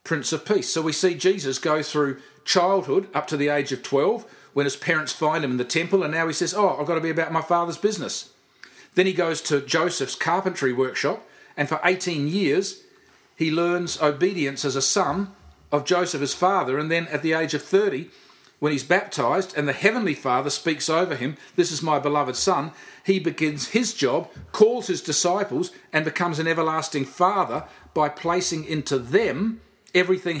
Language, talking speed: English, 190 wpm